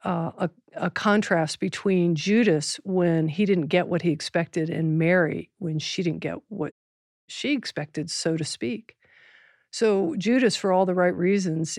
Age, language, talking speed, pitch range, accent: 50-69, English, 165 wpm, 165-210 Hz, American